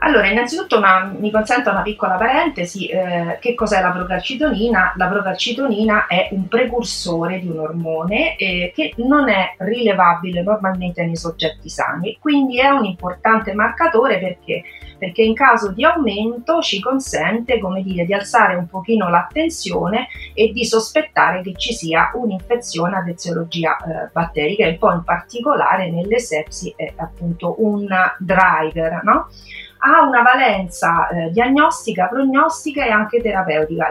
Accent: native